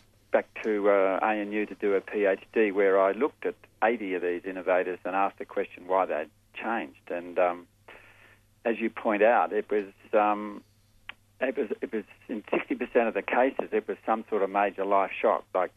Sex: male